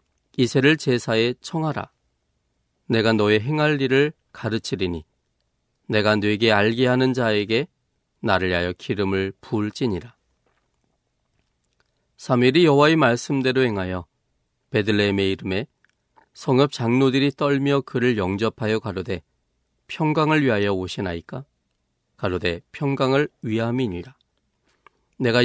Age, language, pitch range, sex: 40-59, Korean, 95-135 Hz, male